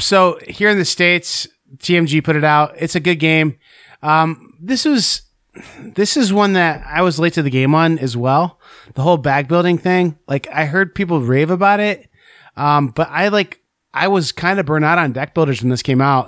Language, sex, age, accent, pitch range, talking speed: English, male, 30-49, American, 140-175 Hz, 215 wpm